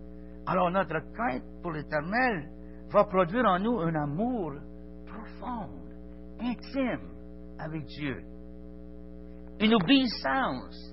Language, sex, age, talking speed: French, male, 60-79, 95 wpm